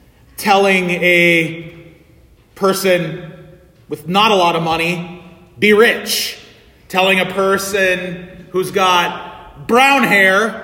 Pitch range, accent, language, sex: 185-250 Hz, American, English, male